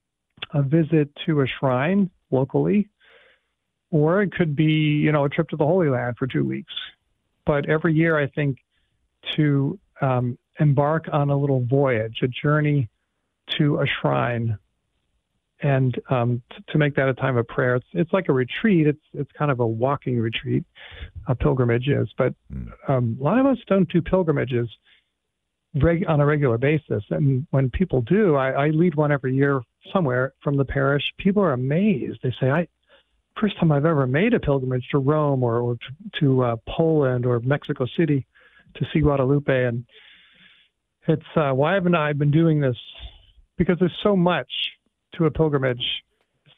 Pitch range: 130-160 Hz